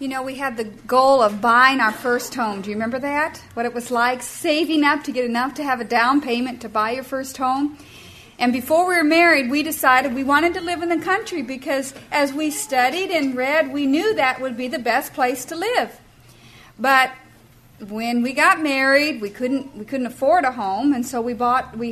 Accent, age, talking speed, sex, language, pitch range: American, 50-69, 220 wpm, female, English, 240-295 Hz